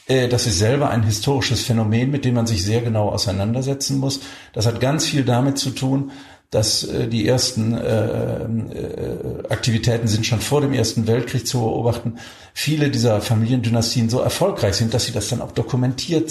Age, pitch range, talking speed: 50-69, 115-130 Hz, 165 wpm